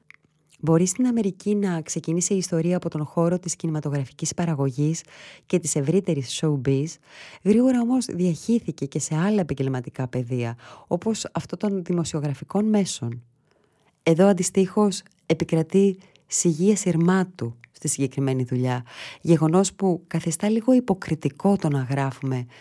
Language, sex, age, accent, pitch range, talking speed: Greek, female, 20-39, native, 140-180 Hz, 120 wpm